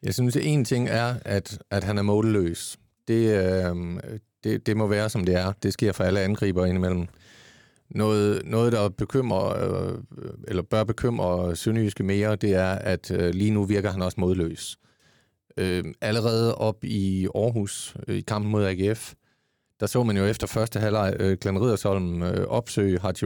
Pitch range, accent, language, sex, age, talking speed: 95-115 Hz, native, Danish, male, 40-59, 170 wpm